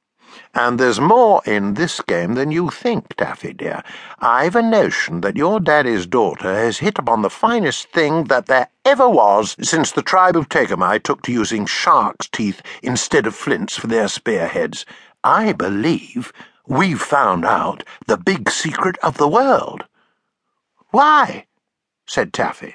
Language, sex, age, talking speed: English, male, 60-79, 155 wpm